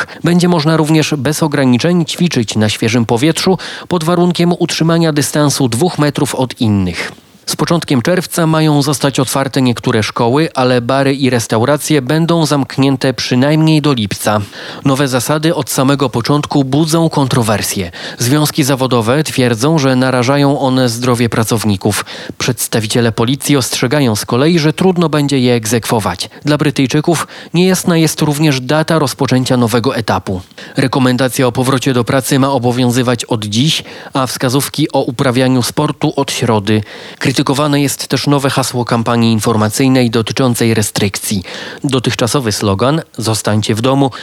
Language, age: Polish, 30-49